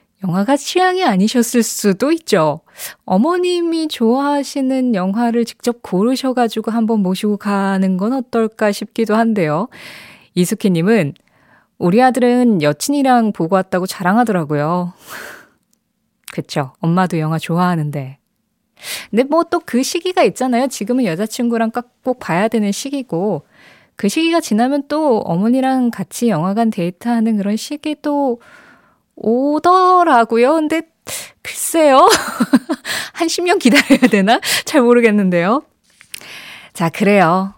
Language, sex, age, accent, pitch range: Korean, female, 20-39, native, 190-270 Hz